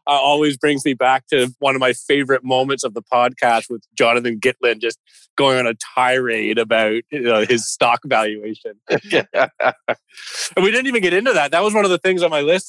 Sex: male